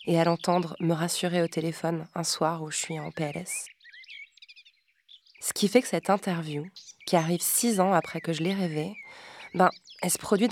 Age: 20-39